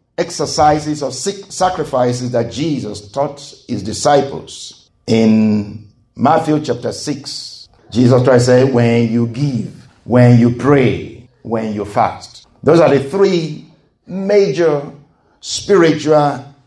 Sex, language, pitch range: male, English, 115-145 Hz